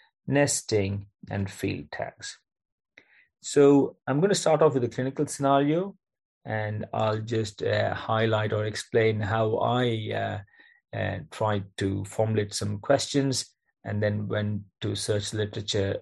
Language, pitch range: English, 105-130 Hz